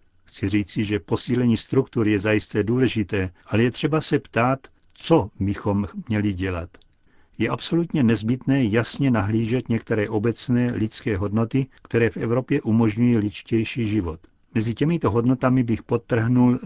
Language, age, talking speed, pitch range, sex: Czech, 60-79, 135 wpm, 100-125 Hz, male